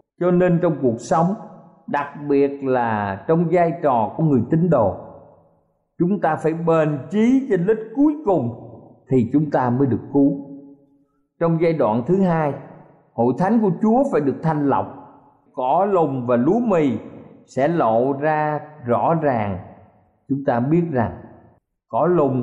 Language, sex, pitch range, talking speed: Vietnamese, male, 130-180 Hz, 160 wpm